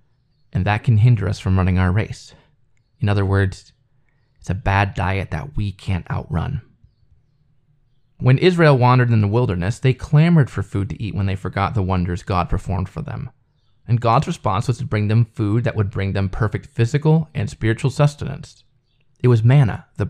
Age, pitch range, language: 20-39, 105-140 Hz, English